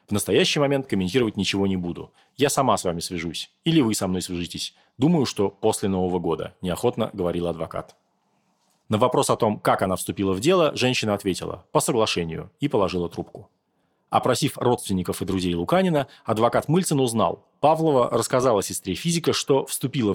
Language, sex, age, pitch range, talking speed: Russian, male, 30-49, 95-135 Hz, 165 wpm